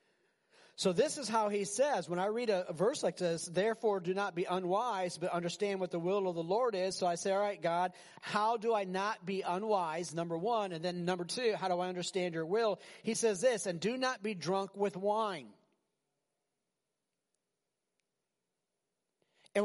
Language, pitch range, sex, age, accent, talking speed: English, 170-220 Hz, male, 40-59, American, 190 wpm